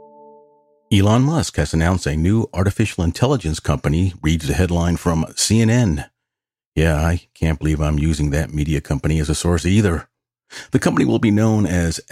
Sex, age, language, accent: male, 50-69, English, American